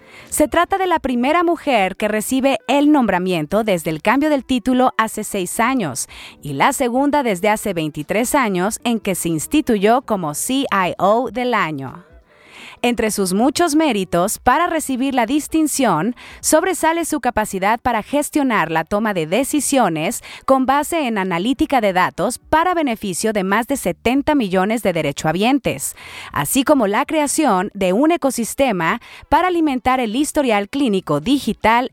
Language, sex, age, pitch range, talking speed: Spanish, female, 30-49, 205-295 Hz, 145 wpm